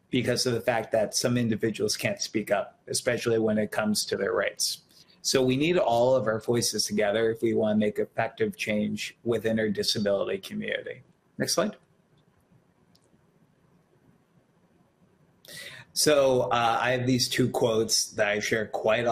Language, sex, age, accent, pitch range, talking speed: English, male, 30-49, American, 110-130 Hz, 155 wpm